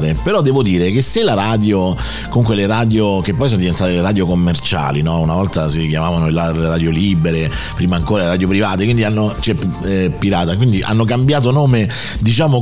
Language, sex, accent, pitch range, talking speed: Italian, male, native, 95-125 Hz, 180 wpm